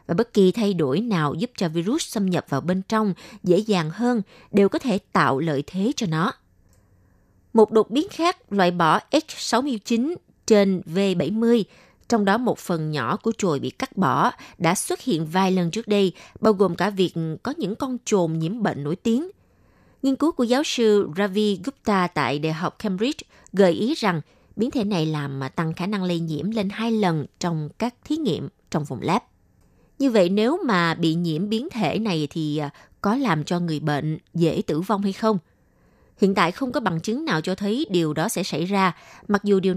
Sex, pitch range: female, 160-220 Hz